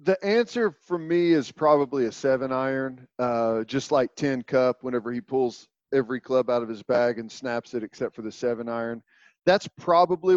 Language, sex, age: English, male, 40-59